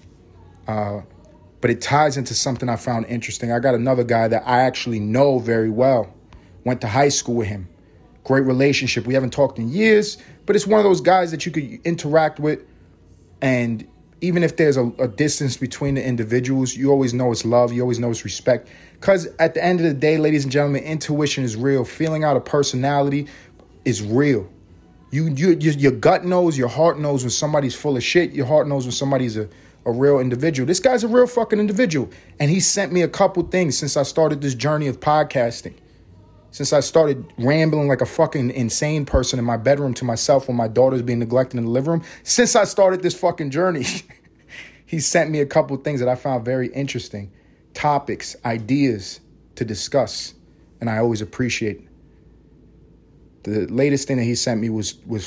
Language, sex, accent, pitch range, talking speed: English, male, American, 115-150 Hz, 200 wpm